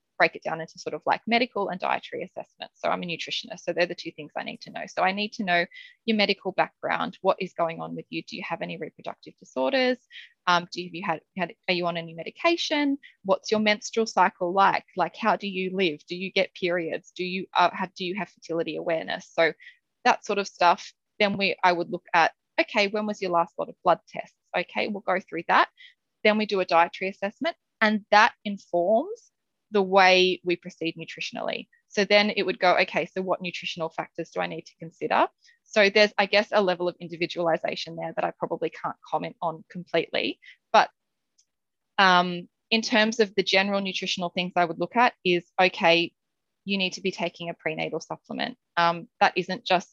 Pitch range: 170-210 Hz